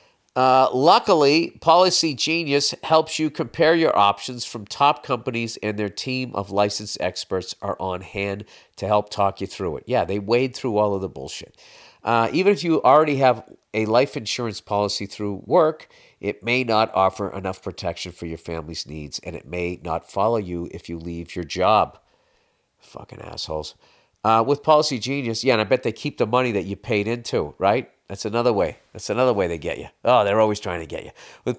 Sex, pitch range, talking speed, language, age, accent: male, 105-155 Hz, 200 wpm, English, 50-69, American